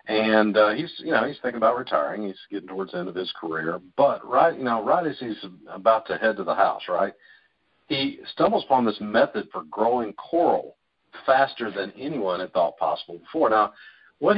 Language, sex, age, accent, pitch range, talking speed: English, male, 50-69, American, 95-115 Hz, 200 wpm